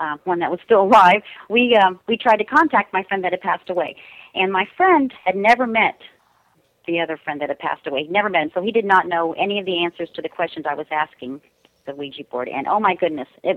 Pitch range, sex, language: 160-200 Hz, female, English